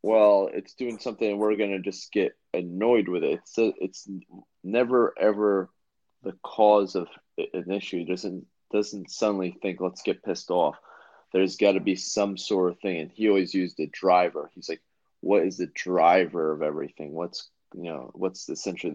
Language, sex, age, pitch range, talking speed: English, male, 30-49, 80-100 Hz, 180 wpm